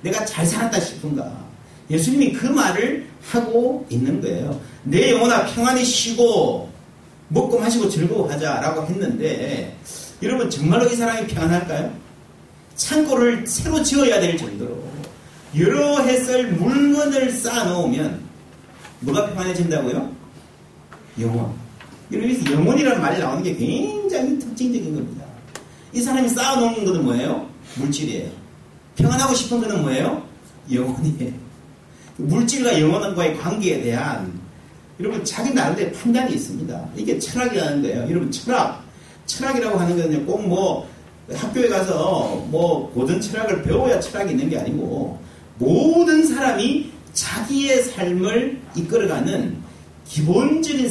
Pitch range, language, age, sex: 160-255 Hz, Korean, 40-59, male